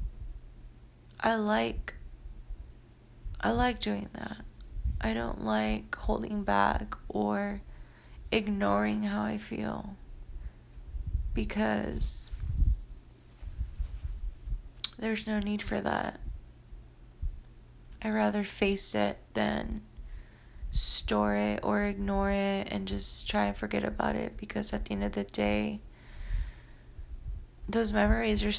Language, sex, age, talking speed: English, female, 20-39, 105 wpm